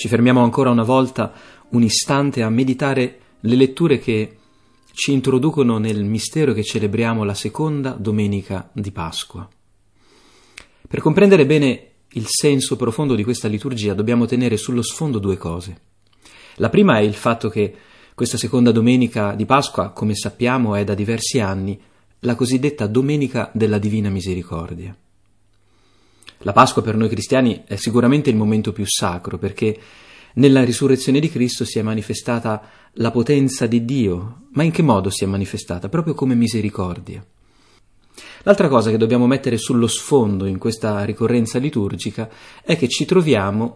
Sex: male